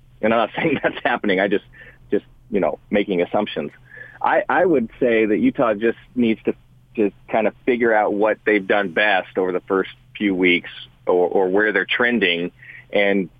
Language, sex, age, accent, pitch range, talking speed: English, male, 30-49, American, 105-120 Hz, 190 wpm